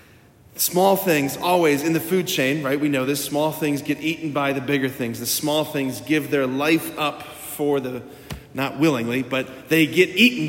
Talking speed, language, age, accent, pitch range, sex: 195 wpm, English, 30-49, American, 135-180 Hz, male